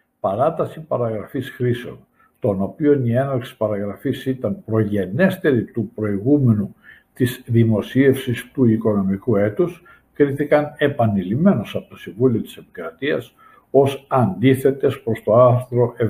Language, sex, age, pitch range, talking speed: Greek, male, 60-79, 110-145 Hz, 110 wpm